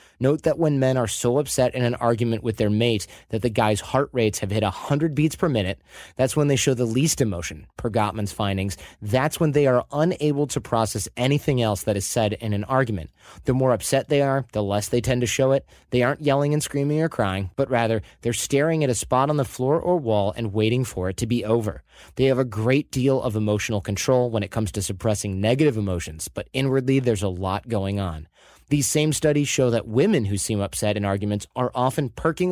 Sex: male